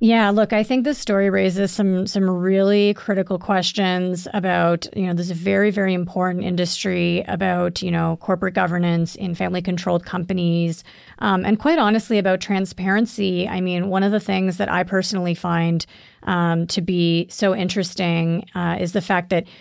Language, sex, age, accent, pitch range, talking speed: English, female, 30-49, American, 175-195 Hz, 170 wpm